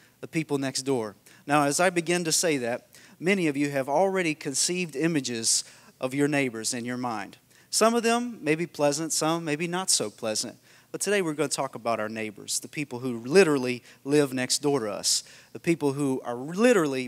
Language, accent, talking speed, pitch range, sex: English, American, 205 wpm, 130-165 Hz, male